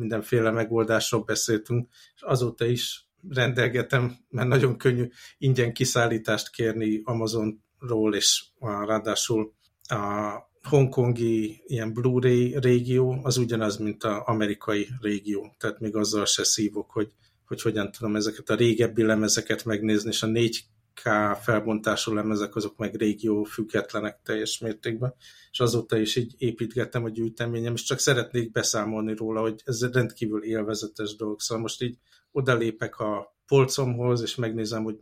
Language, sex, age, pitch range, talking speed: Hungarian, male, 50-69, 110-120 Hz, 135 wpm